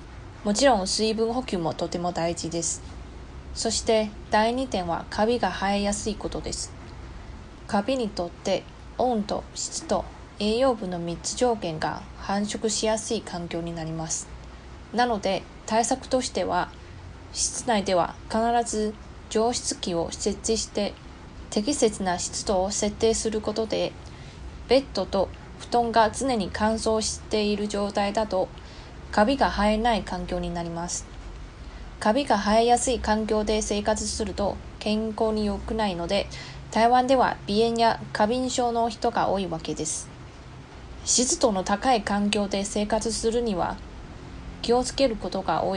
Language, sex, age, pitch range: Japanese, female, 20-39, 185-230 Hz